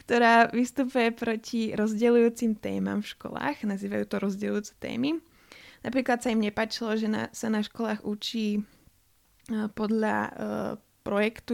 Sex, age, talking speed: female, 20-39, 125 wpm